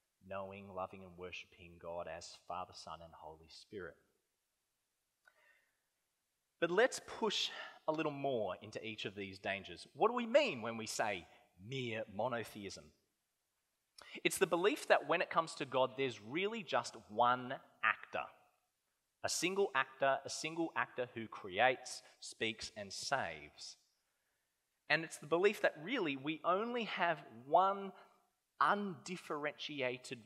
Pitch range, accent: 100-145 Hz, Australian